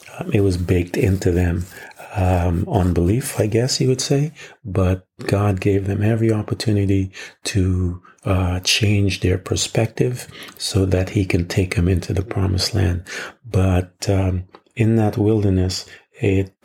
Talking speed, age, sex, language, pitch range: 145 wpm, 40-59, male, English, 90-105 Hz